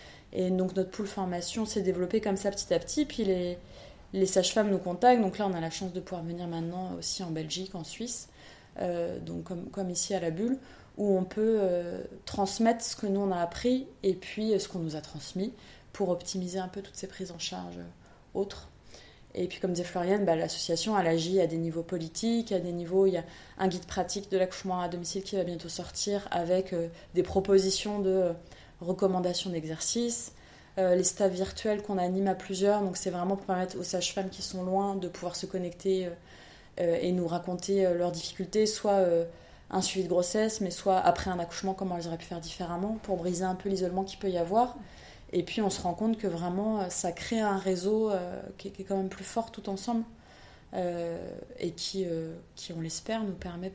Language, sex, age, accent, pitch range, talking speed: French, female, 20-39, French, 175-200 Hz, 220 wpm